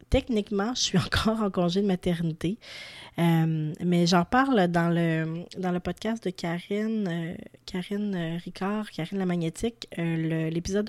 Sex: female